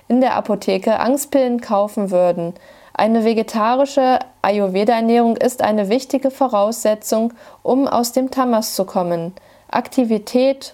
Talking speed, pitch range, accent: 115 wpm, 185-240 Hz, German